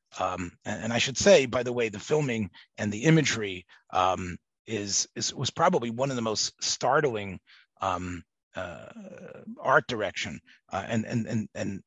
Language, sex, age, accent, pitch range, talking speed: English, male, 30-49, American, 95-120 Hz, 165 wpm